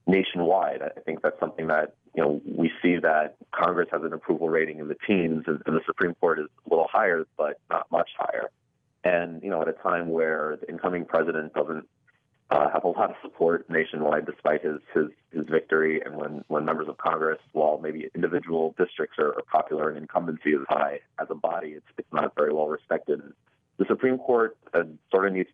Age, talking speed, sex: 30-49, 205 wpm, male